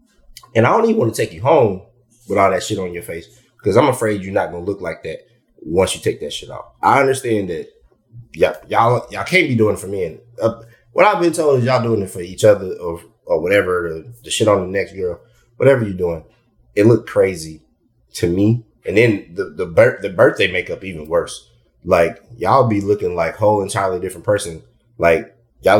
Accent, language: American, English